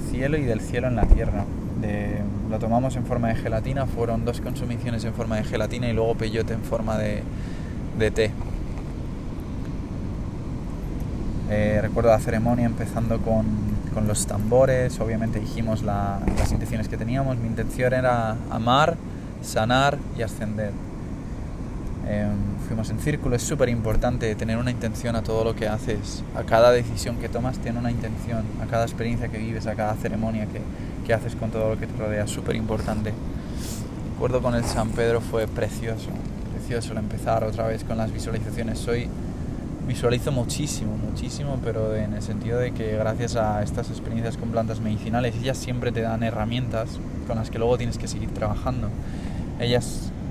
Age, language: 20-39, Spanish